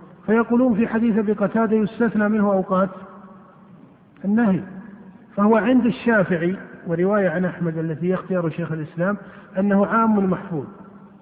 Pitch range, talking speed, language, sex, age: 180-210 Hz, 110 wpm, Arabic, male, 50-69